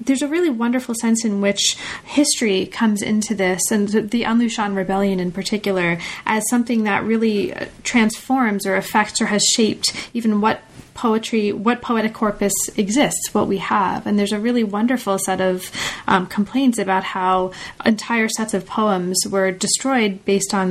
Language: English